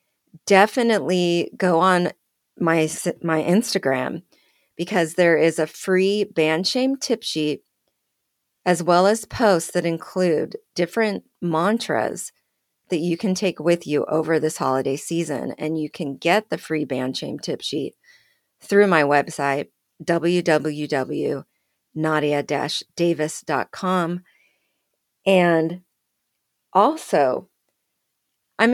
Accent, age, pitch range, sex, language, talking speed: American, 40-59, 155-195 Hz, female, English, 105 wpm